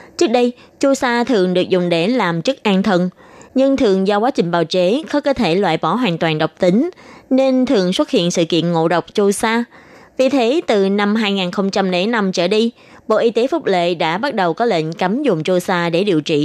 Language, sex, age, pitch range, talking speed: Vietnamese, female, 20-39, 180-245 Hz, 225 wpm